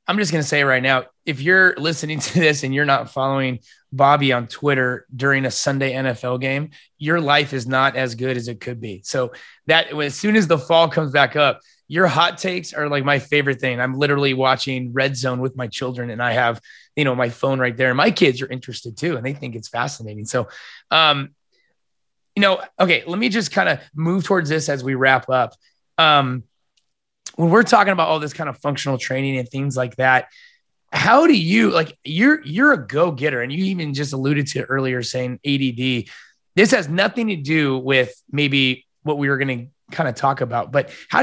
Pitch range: 130-160 Hz